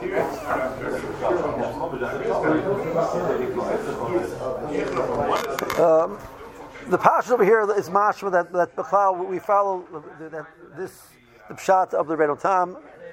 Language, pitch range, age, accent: English, 155-190 Hz, 60-79, American